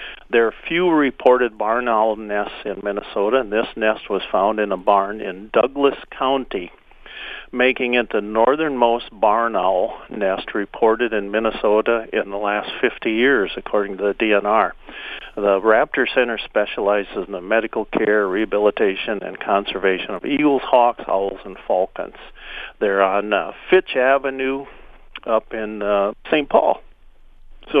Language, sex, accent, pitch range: English, male, American, 110-135 Hz